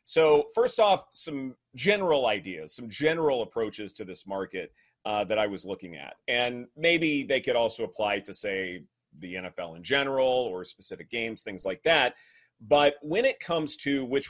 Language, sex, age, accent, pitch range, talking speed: English, male, 30-49, American, 105-145 Hz, 175 wpm